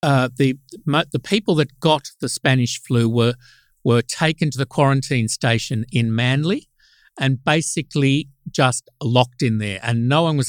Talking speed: 160 wpm